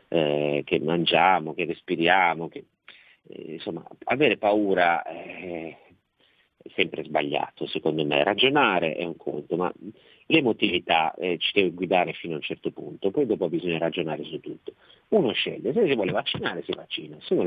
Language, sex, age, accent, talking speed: Italian, male, 50-69, native, 160 wpm